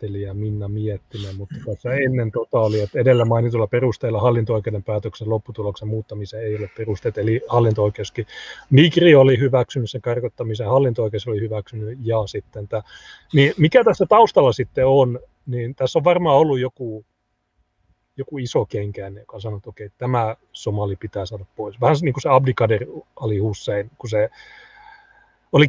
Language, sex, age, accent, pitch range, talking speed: Finnish, male, 30-49, native, 105-130 Hz, 145 wpm